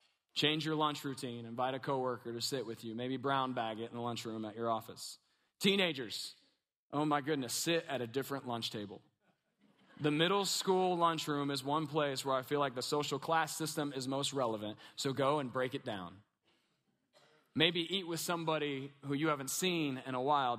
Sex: male